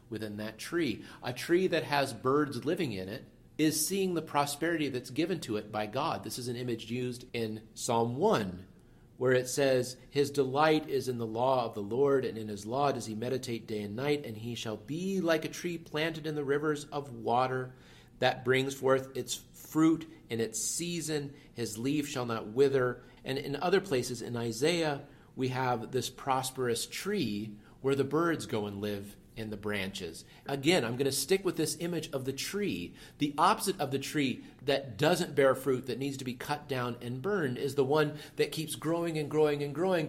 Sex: male